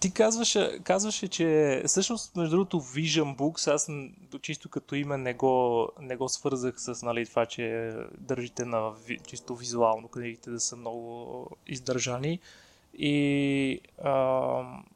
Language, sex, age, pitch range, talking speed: Bulgarian, male, 20-39, 125-150 Hz, 130 wpm